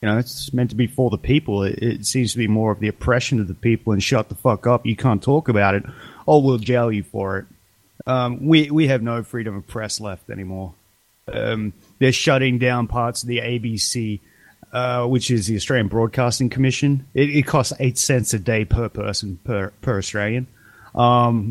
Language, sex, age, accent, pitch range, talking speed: English, male, 30-49, Australian, 110-135 Hz, 210 wpm